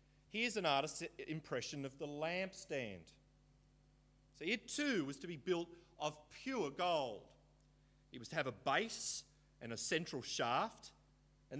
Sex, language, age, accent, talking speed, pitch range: male, English, 30-49, Australian, 145 wpm, 135-170 Hz